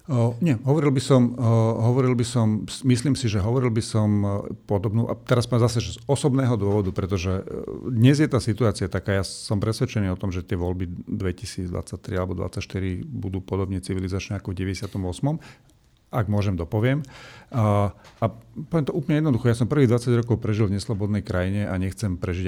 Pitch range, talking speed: 95-120 Hz, 180 wpm